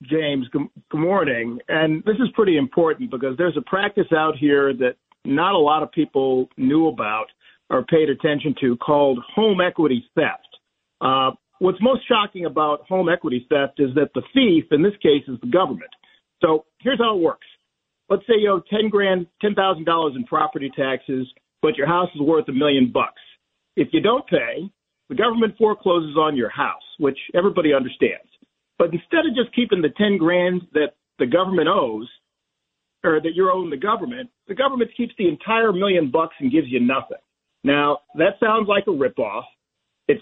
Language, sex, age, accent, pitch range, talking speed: English, male, 50-69, American, 150-220 Hz, 175 wpm